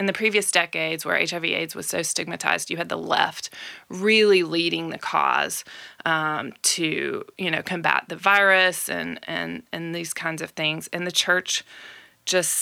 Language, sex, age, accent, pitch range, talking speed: English, female, 20-39, American, 160-185 Hz, 170 wpm